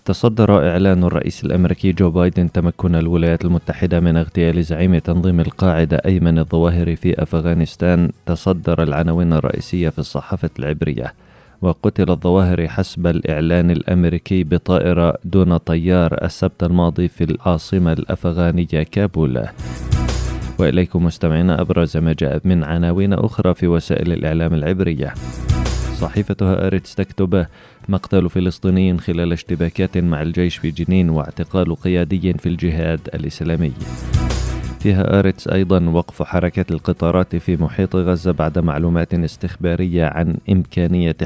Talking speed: 115 wpm